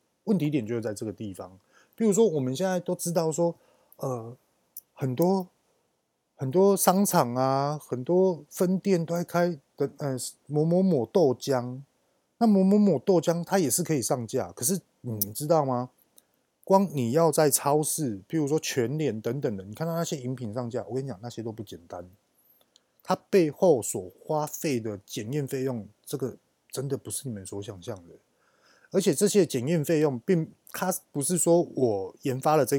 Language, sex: Chinese, male